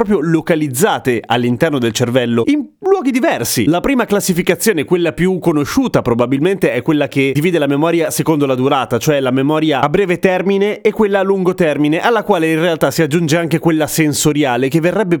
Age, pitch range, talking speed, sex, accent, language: 30-49, 135-185 Hz, 180 wpm, male, native, Italian